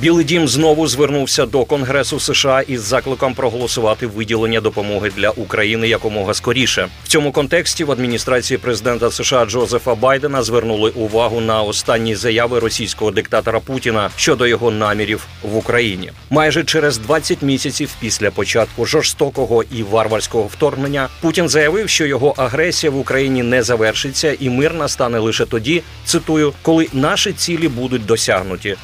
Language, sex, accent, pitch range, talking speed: Ukrainian, male, native, 110-145 Hz, 140 wpm